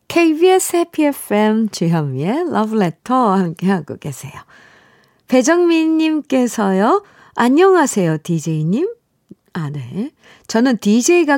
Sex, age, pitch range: female, 50-69, 175-250 Hz